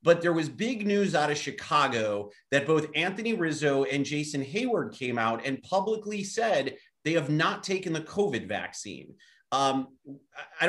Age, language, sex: 30-49, English, male